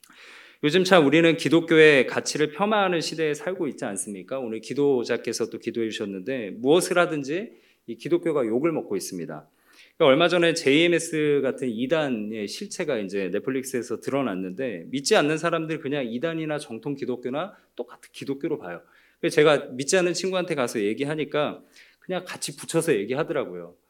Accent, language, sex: native, Korean, male